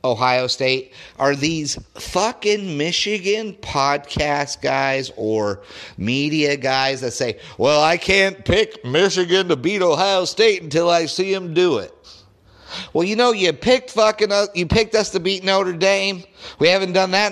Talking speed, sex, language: 160 wpm, male, English